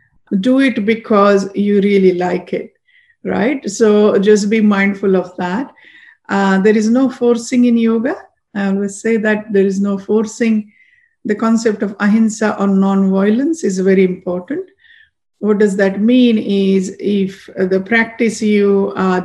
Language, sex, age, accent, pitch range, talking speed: English, female, 50-69, Indian, 195-230 Hz, 155 wpm